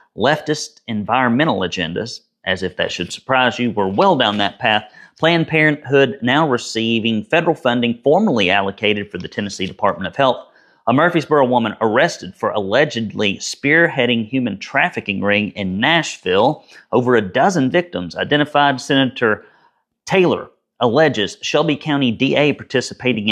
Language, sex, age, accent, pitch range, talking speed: English, male, 40-59, American, 110-150 Hz, 135 wpm